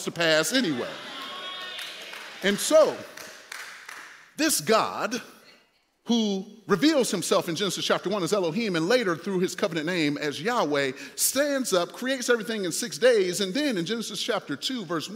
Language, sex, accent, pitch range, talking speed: English, male, American, 175-255 Hz, 150 wpm